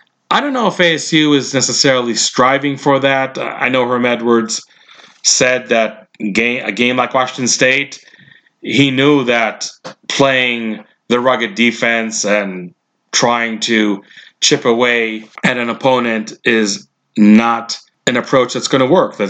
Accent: American